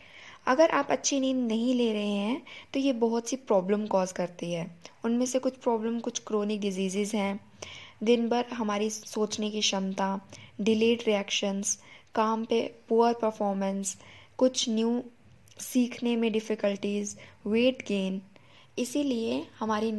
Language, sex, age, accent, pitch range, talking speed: Hindi, female, 20-39, native, 200-240 Hz, 135 wpm